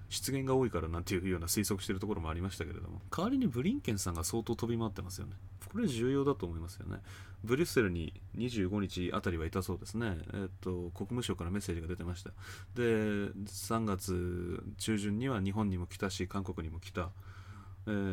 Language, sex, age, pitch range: Japanese, male, 20-39, 95-120 Hz